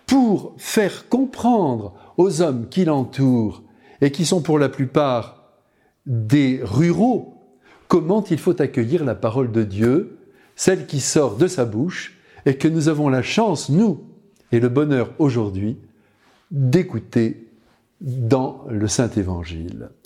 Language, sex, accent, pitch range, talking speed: French, male, French, 130-205 Hz, 130 wpm